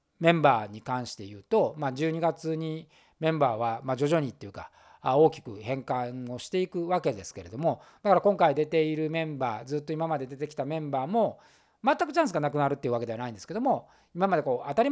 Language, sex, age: Japanese, male, 40-59